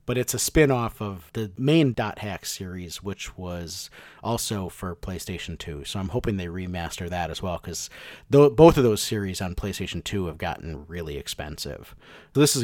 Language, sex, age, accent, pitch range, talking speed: English, male, 30-49, American, 95-125 Hz, 185 wpm